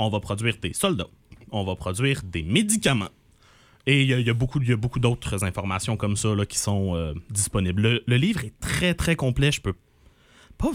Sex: male